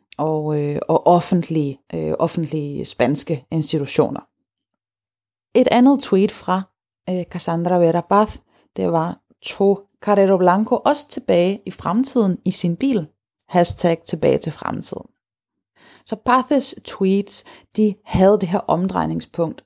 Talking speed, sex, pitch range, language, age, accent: 120 wpm, female, 160-210 Hz, Danish, 30-49, native